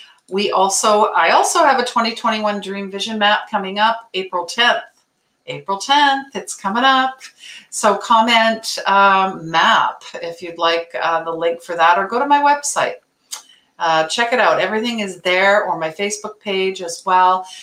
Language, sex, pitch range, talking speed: English, female, 175-220 Hz, 165 wpm